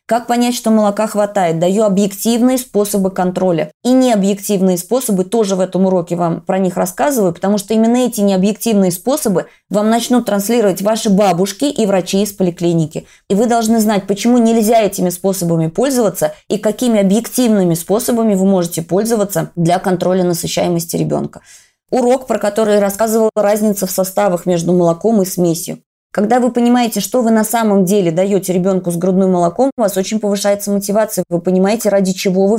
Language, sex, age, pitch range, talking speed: Russian, female, 20-39, 180-220 Hz, 165 wpm